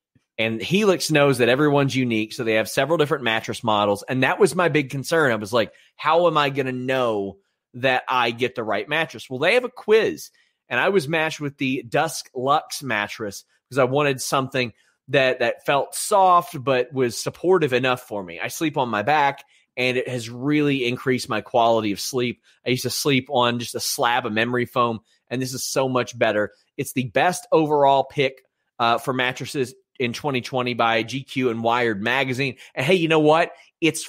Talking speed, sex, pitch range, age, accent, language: 200 wpm, male, 120-160 Hz, 30-49, American, English